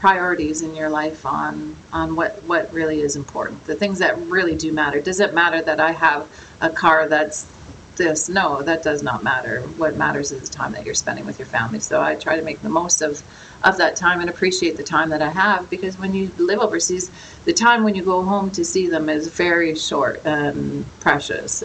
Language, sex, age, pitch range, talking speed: English, female, 40-59, 150-185 Hz, 220 wpm